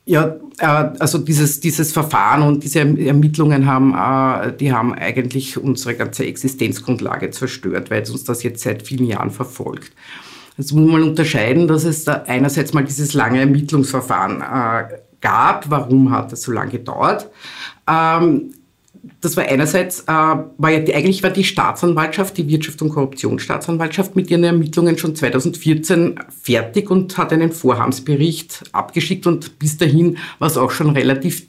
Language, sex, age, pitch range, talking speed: German, female, 50-69, 130-155 Hz, 150 wpm